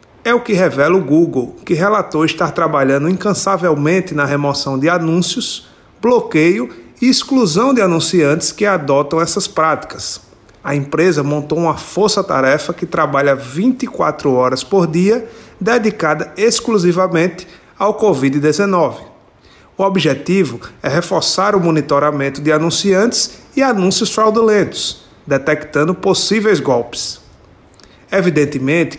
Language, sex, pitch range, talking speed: Portuguese, male, 150-195 Hz, 110 wpm